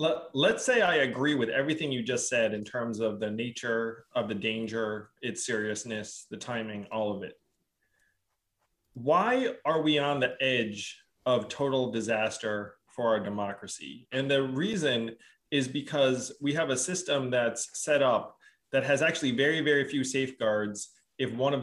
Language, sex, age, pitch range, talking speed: English, male, 20-39, 115-150 Hz, 160 wpm